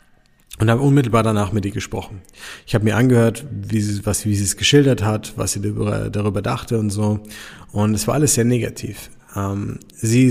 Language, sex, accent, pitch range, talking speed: German, male, German, 105-125 Hz, 190 wpm